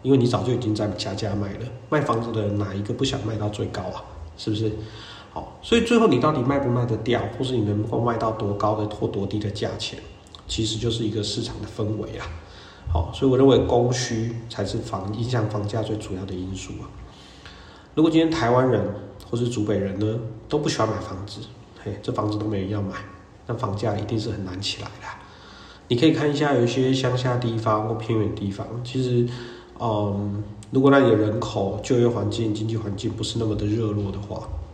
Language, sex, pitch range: Chinese, male, 100-120 Hz